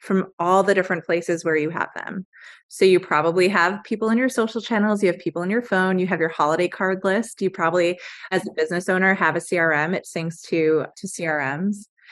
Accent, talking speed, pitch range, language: American, 220 wpm, 165-195 Hz, English